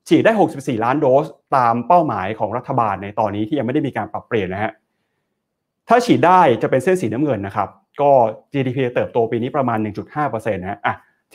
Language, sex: Thai, male